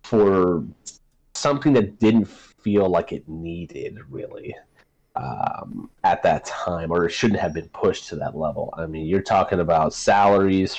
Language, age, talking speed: English, 30-49, 155 wpm